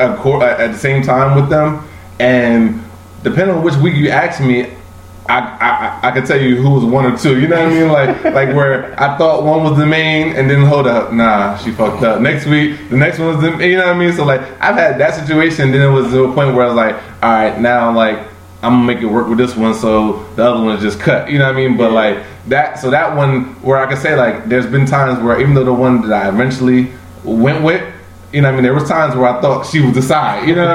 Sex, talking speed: male, 275 wpm